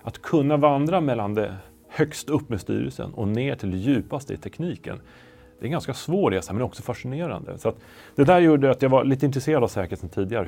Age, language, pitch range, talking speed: 30-49, Swedish, 95-130 Hz, 230 wpm